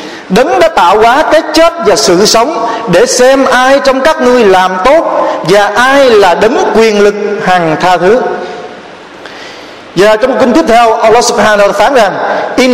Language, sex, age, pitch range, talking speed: Vietnamese, male, 50-69, 190-255 Hz, 155 wpm